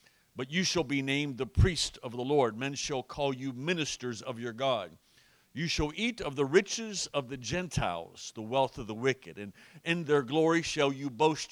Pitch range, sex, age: 130-170 Hz, male, 50-69